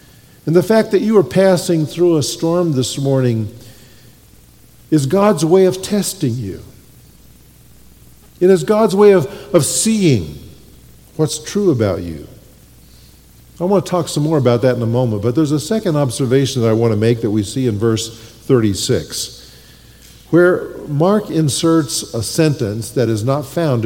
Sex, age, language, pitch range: male, 50-69, English, 115-175 Hz